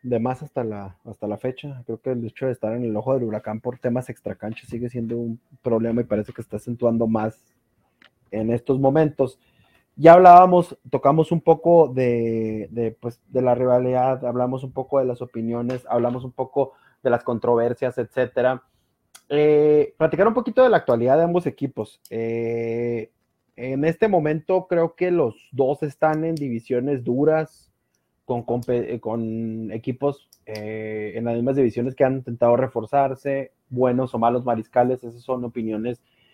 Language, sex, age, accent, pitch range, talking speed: Spanish, male, 30-49, Mexican, 115-150 Hz, 165 wpm